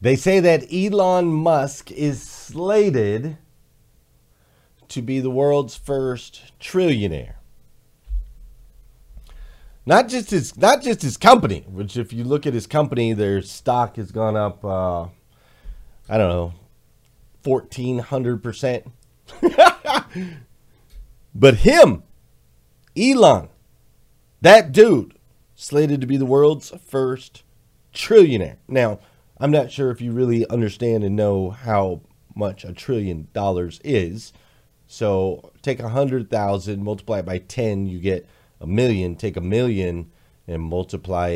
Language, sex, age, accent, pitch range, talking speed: English, male, 40-59, American, 90-130 Hz, 120 wpm